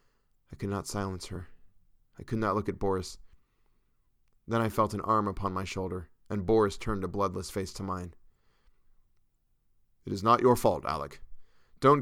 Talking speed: 170 wpm